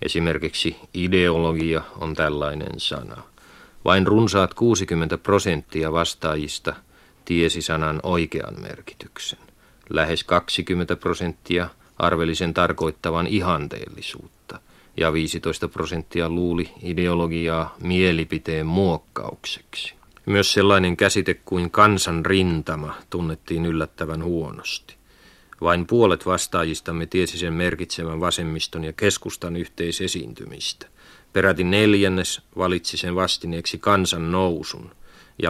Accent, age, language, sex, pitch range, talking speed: native, 40-59, Finnish, male, 80-95 Hz, 95 wpm